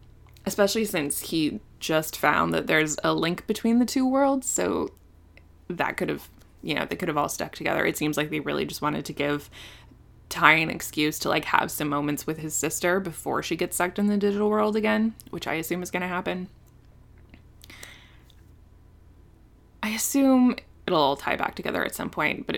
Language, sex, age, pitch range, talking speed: English, female, 20-39, 145-205 Hz, 190 wpm